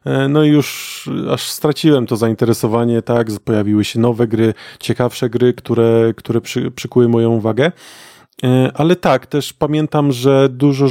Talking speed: 140 wpm